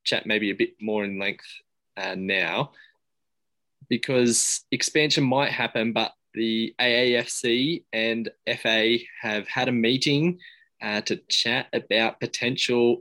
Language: English